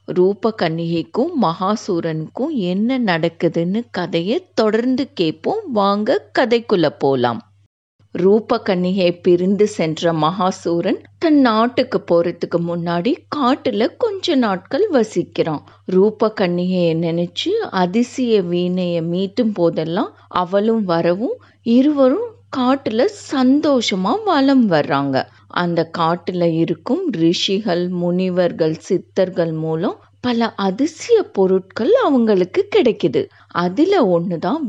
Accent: native